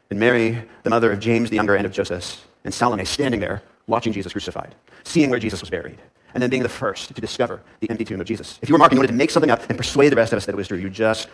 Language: English